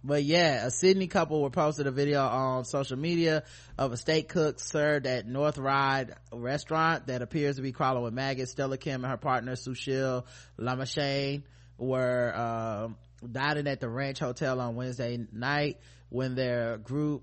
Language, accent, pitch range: English, American, 115-140 Hz